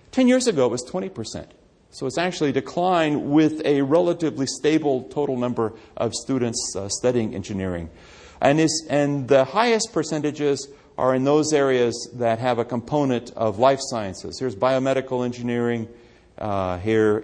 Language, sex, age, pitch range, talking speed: English, male, 40-59, 100-135 Hz, 145 wpm